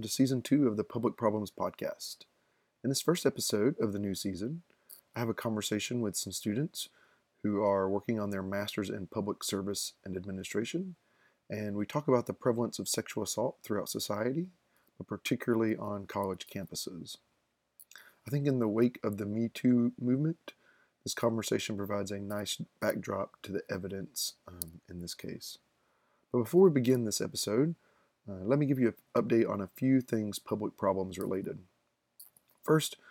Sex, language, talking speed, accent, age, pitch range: male, English, 170 wpm, American, 30-49, 100-125 Hz